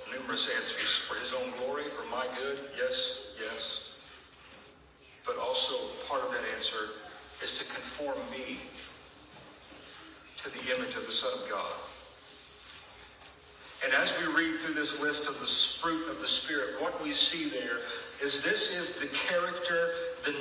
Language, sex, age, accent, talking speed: English, male, 50-69, American, 155 wpm